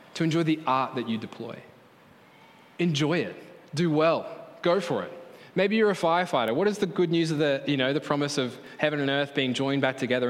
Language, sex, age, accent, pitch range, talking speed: English, male, 20-39, Australian, 140-215 Hz, 215 wpm